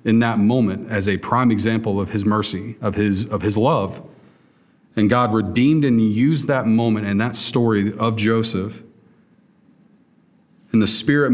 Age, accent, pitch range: 40-59, American, 105-125 Hz